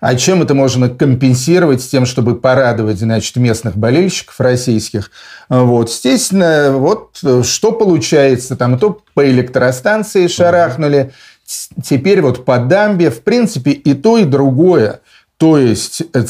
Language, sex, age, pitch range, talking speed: Russian, male, 40-59, 125-160 Hz, 130 wpm